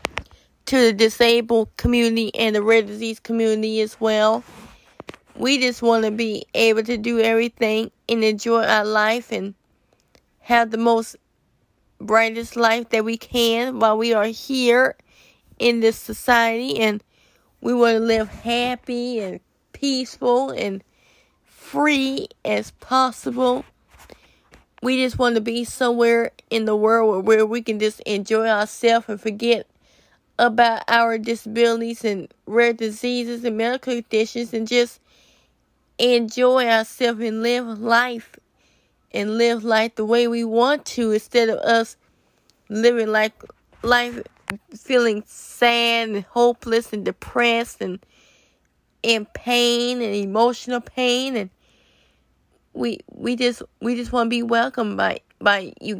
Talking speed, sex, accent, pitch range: 135 wpm, female, American, 220-240 Hz